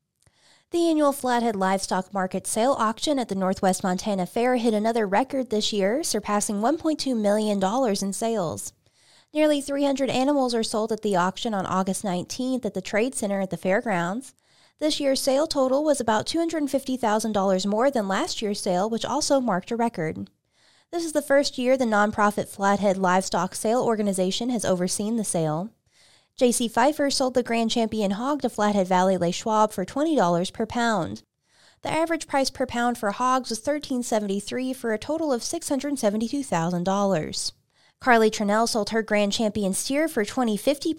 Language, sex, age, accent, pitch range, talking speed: English, female, 20-39, American, 200-260 Hz, 165 wpm